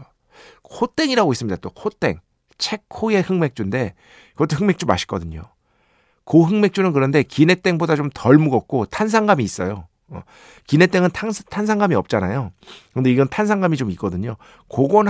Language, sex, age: Korean, male, 50-69